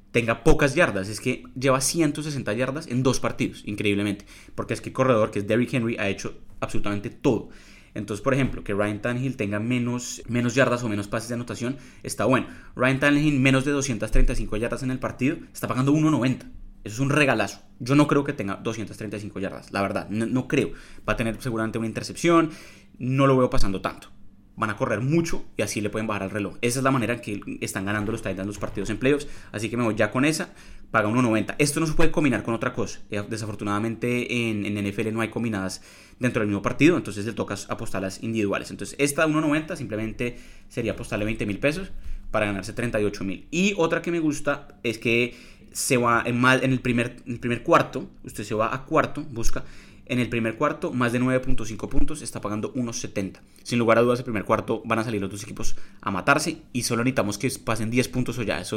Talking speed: 215 wpm